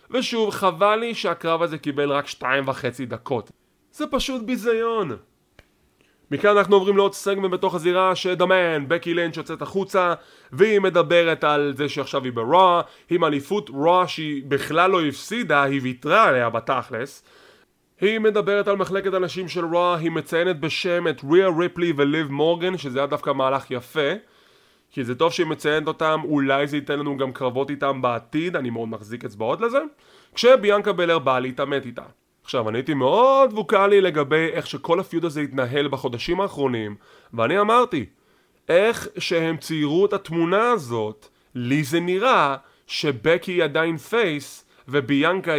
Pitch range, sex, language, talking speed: 140-185 Hz, male, English, 150 wpm